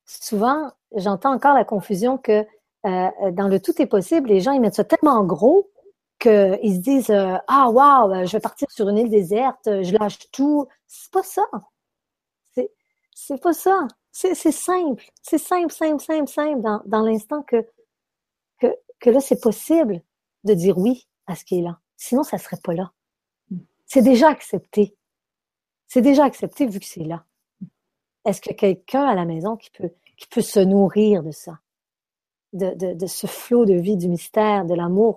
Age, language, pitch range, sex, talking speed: 40-59, French, 185-260 Hz, female, 190 wpm